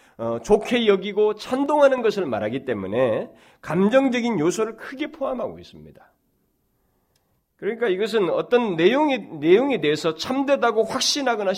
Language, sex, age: Korean, male, 40-59